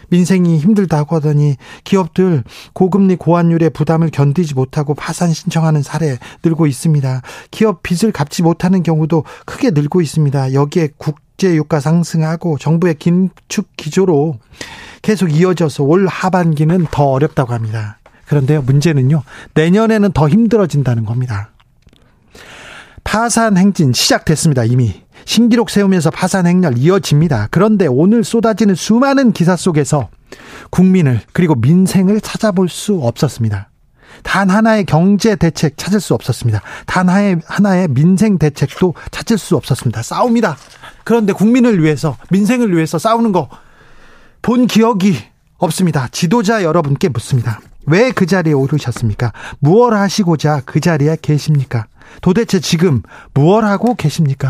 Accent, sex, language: native, male, Korean